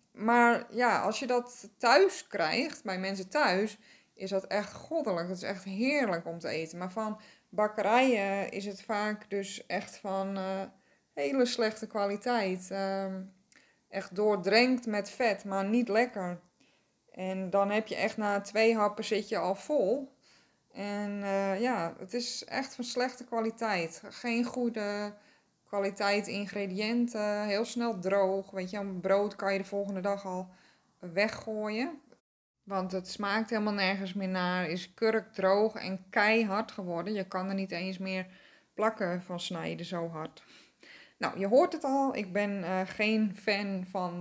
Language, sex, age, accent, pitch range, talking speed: Dutch, female, 20-39, Dutch, 190-225 Hz, 155 wpm